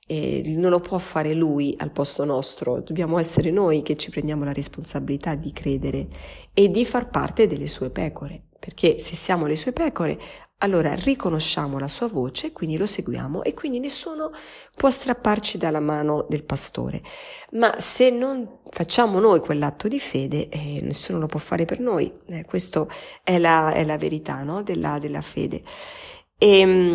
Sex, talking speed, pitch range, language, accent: female, 165 wpm, 145-180 Hz, Italian, native